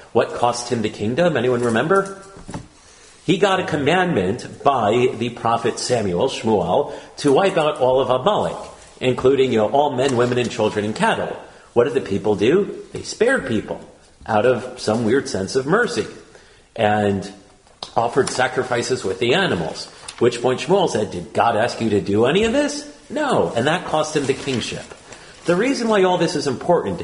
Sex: male